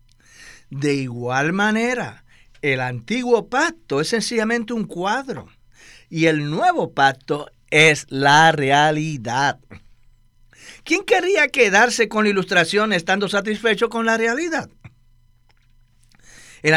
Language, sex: Spanish, male